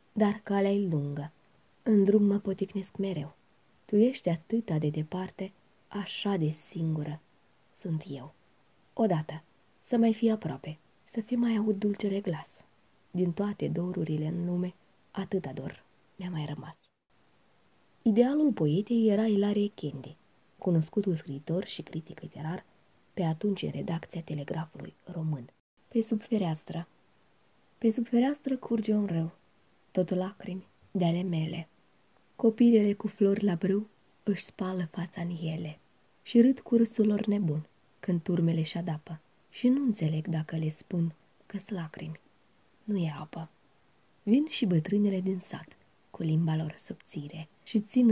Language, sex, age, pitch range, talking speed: Romanian, female, 20-39, 160-205 Hz, 140 wpm